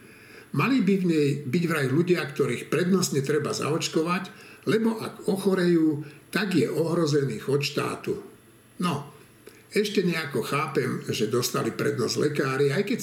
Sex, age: male, 60-79